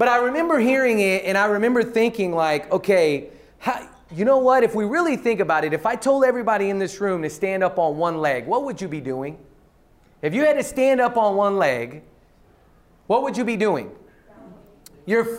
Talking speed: 205 wpm